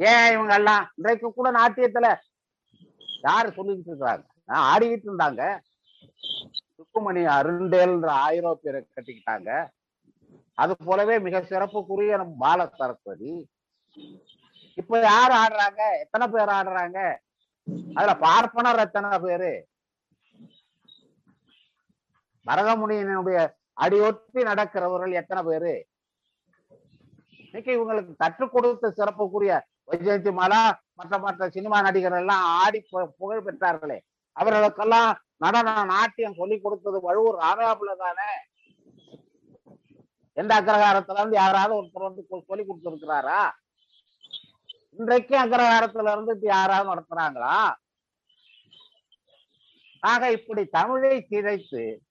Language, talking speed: Tamil, 75 wpm